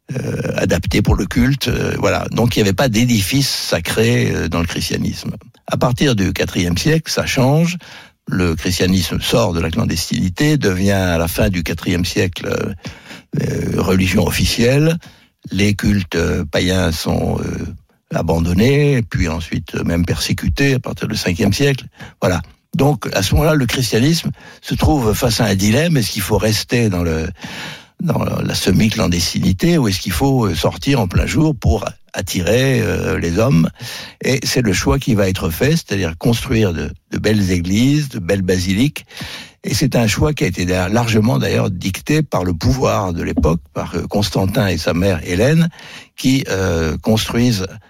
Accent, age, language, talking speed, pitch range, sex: French, 60-79, French, 170 wpm, 90-125 Hz, male